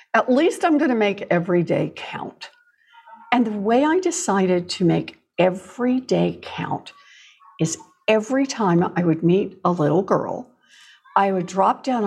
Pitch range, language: 180-265 Hz, English